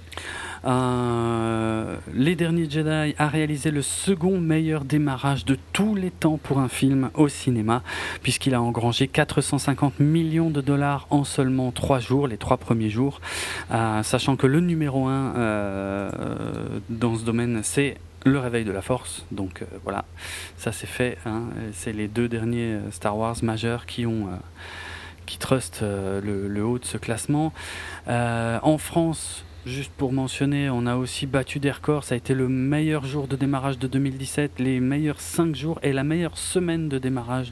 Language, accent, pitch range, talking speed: French, French, 110-145 Hz, 170 wpm